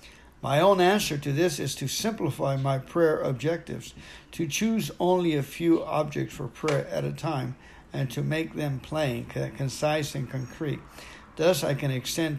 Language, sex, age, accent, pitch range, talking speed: English, male, 60-79, American, 135-165 Hz, 165 wpm